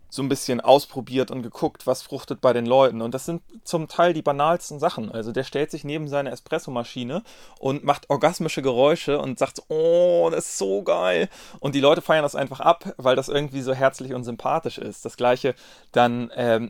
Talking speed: 200 wpm